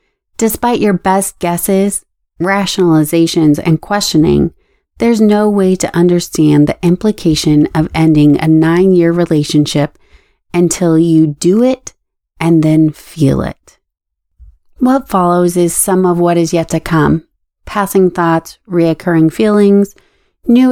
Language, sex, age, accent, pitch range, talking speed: English, female, 30-49, American, 165-210 Hz, 120 wpm